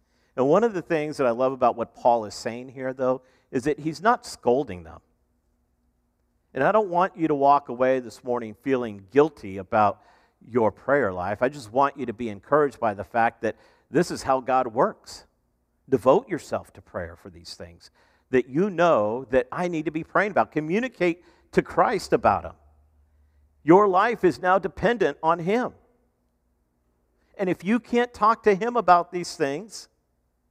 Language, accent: English, American